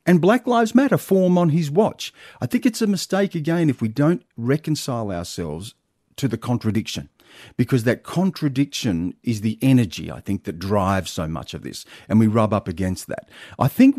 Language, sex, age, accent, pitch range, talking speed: English, male, 40-59, Australian, 85-125 Hz, 190 wpm